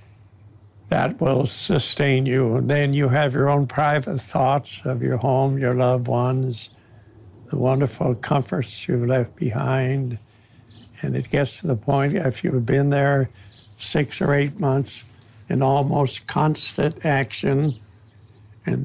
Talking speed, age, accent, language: 135 wpm, 60-79, American, English